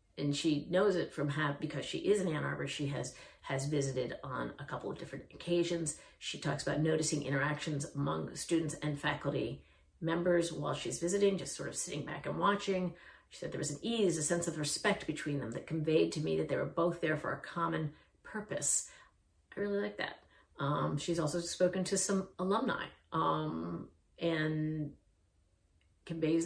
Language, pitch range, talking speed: English, 140-175 Hz, 185 wpm